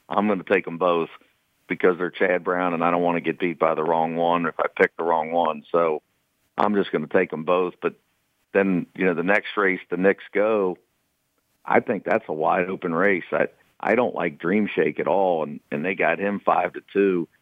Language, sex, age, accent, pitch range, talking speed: English, male, 50-69, American, 85-95 Hz, 235 wpm